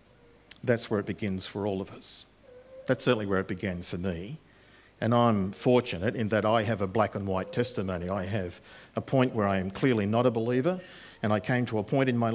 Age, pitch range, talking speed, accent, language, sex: 50-69, 100-125 Hz, 225 wpm, Australian, English, male